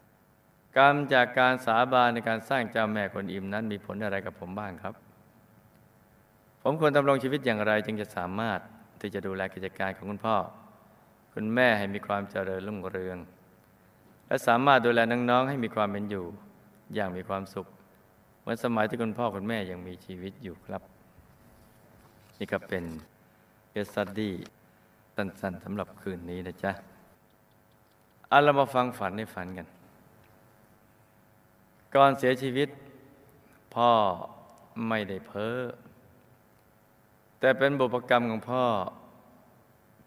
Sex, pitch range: male, 100-120 Hz